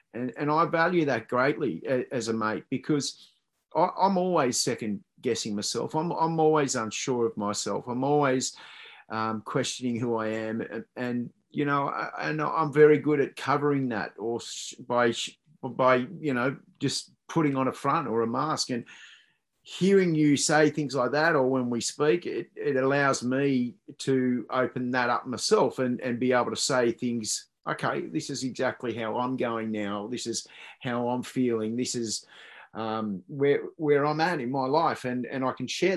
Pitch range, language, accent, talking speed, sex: 120-150 Hz, English, Australian, 180 wpm, male